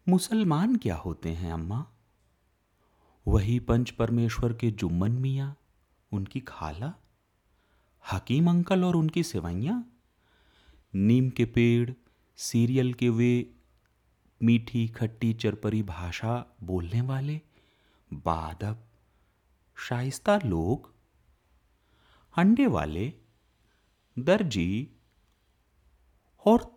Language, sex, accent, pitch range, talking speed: Hindi, male, native, 95-155 Hz, 85 wpm